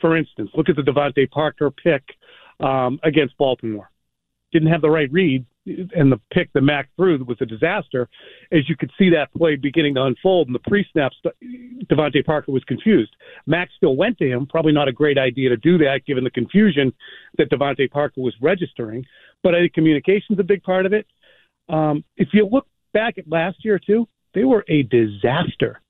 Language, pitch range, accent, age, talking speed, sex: English, 135-175 Hz, American, 40-59, 195 wpm, male